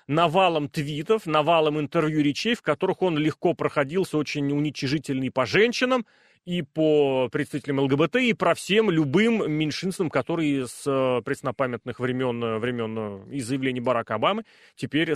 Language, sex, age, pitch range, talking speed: Russian, male, 30-49, 145-210 Hz, 130 wpm